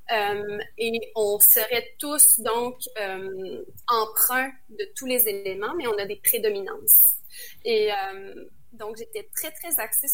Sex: female